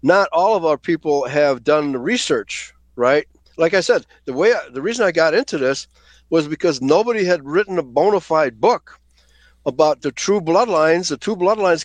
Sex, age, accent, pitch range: male, 60-79, American, 145-190 Hz